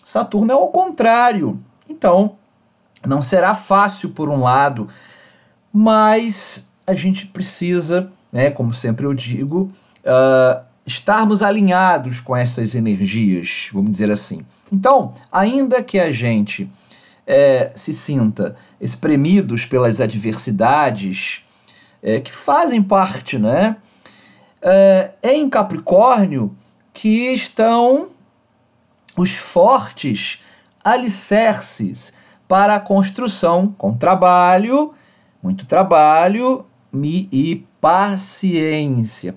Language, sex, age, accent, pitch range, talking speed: Portuguese, male, 40-59, Brazilian, 130-205 Hz, 95 wpm